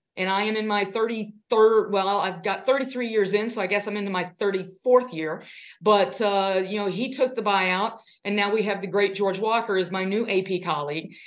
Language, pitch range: English, 195-230 Hz